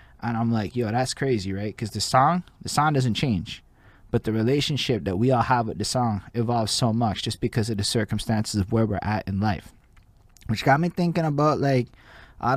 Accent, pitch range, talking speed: American, 105-120 Hz, 215 wpm